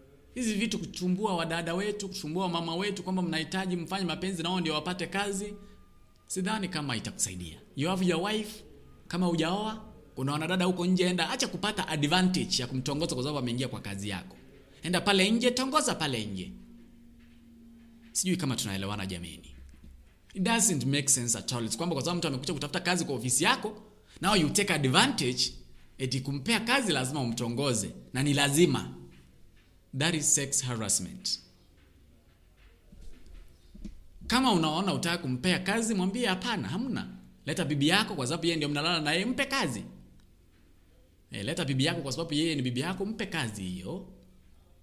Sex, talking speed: male, 150 wpm